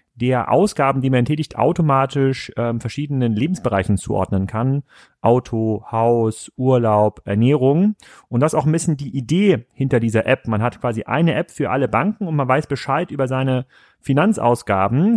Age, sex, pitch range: 30-49, male, 115-145 Hz